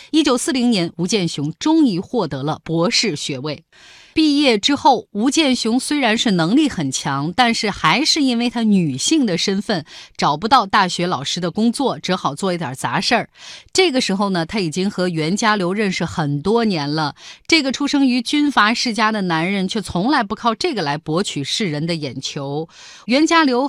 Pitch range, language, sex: 170-255 Hz, Chinese, female